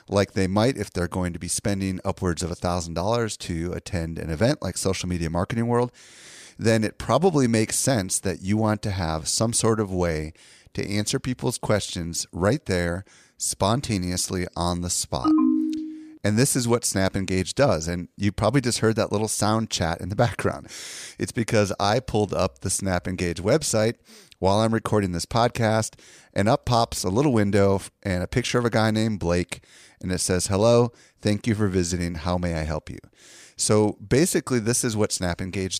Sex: male